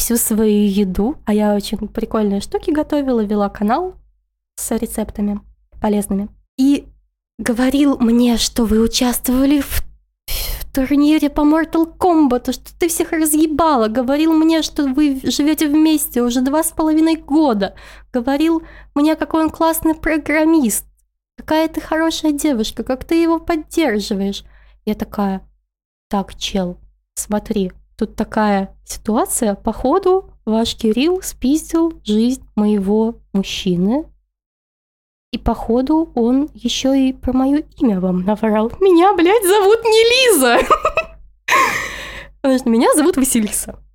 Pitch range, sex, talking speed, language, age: 225-320 Hz, female, 120 wpm, Russian, 20-39